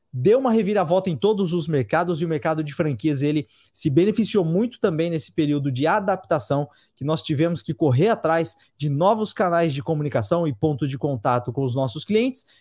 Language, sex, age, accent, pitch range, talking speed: Portuguese, male, 20-39, Brazilian, 145-185 Hz, 190 wpm